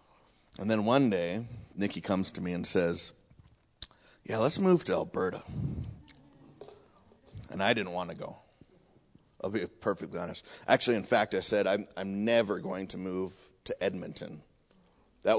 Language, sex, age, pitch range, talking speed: English, male, 30-49, 100-120 Hz, 150 wpm